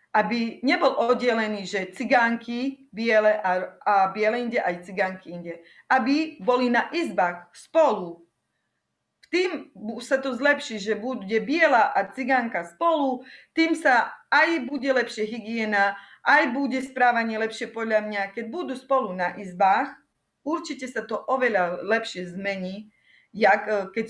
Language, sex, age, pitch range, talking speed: Slovak, female, 30-49, 200-265 Hz, 130 wpm